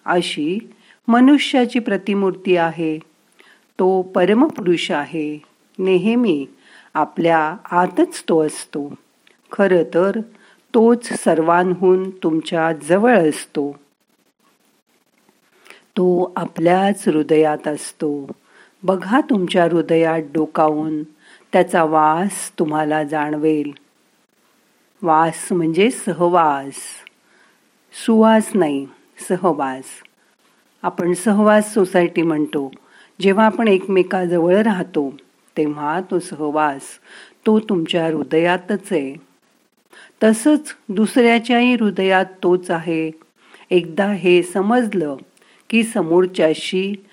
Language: Marathi